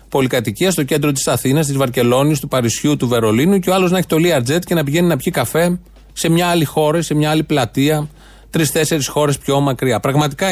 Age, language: 30-49, Greek